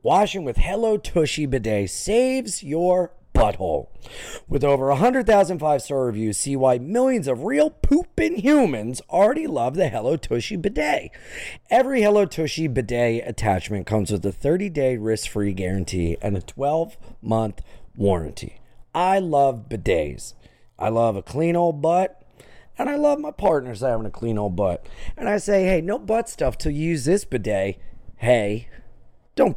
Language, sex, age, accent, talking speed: English, male, 30-49, American, 150 wpm